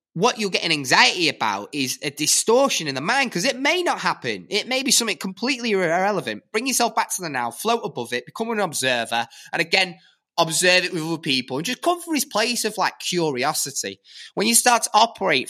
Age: 20-39